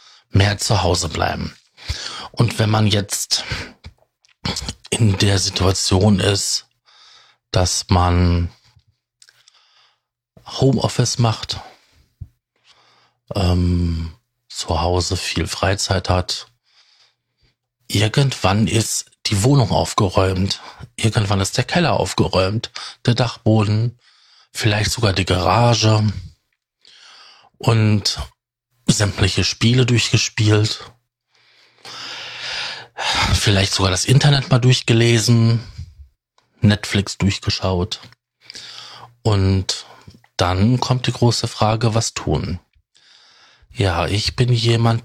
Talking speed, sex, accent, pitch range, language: 85 wpm, male, German, 95-120 Hz, German